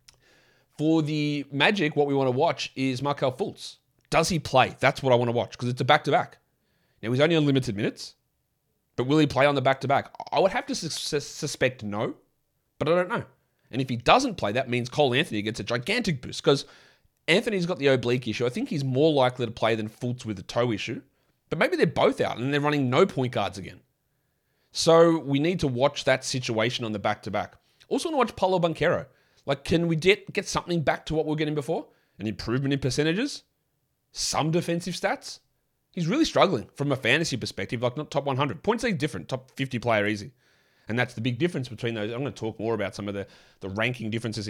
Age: 30-49